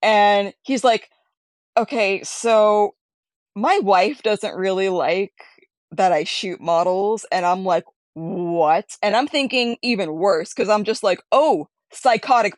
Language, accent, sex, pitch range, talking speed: English, American, female, 190-275 Hz, 140 wpm